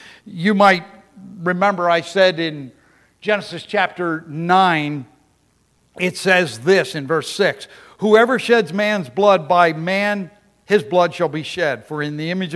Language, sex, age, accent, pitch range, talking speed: English, male, 60-79, American, 160-200 Hz, 145 wpm